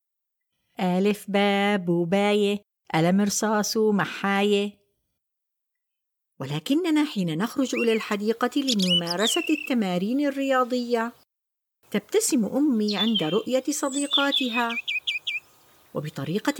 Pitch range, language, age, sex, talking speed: 200-290 Hz, Arabic, 50-69, female, 70 wpm